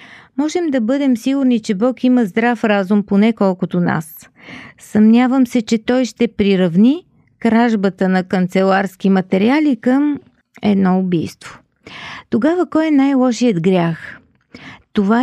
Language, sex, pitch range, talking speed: Bulgarian, female, 200-255 Hz, 120 wpm